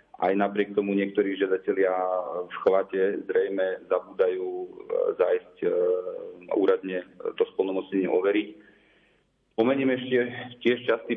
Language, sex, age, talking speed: Slovak, male, 30-49, 95 wpm